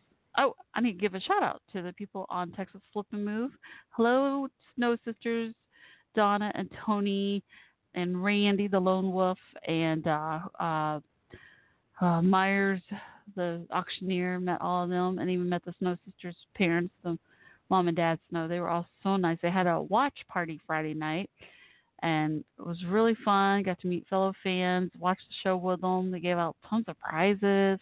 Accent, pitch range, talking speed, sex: American, 165-190 Hz, 180 wpm, female